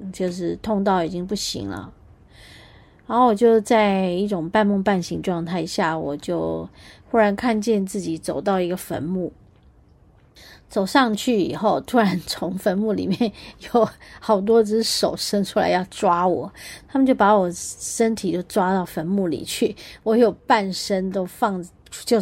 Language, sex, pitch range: Chinese, female, 190-250 Hz